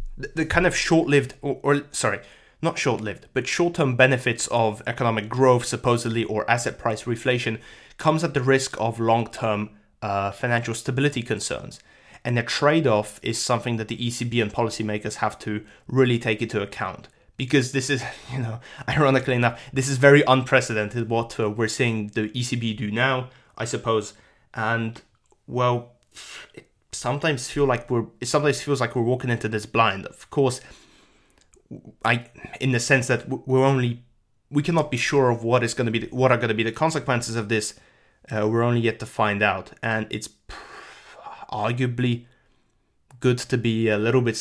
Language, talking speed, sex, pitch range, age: English, 170 wpm, male, 110-130 Hz, 20-39